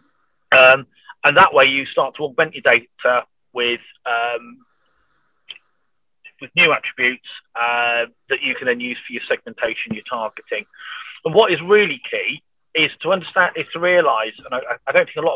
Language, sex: English, male